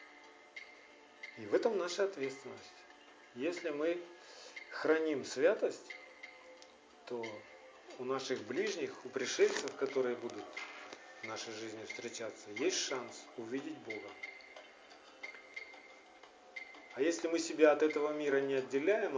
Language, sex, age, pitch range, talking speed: Russian, male, 40-59, 120-180 Hz, 105 wpm